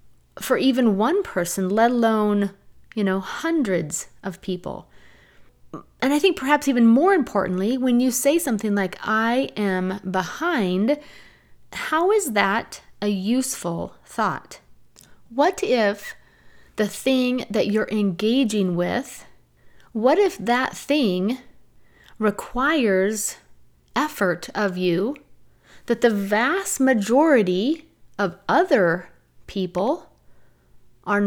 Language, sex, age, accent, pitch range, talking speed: English, female, 30-49, American, 200-275 Hz, 105 wpm